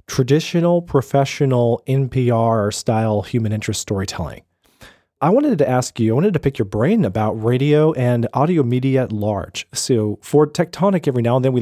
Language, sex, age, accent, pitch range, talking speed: English, male, 30-49, American, 110-145 Hz, 165 wpm